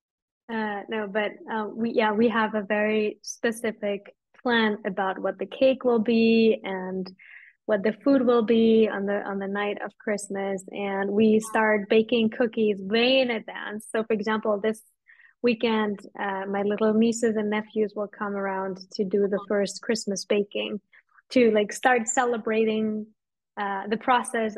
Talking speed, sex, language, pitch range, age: 160 wpm, female, English, 205-235 Hz, 20-39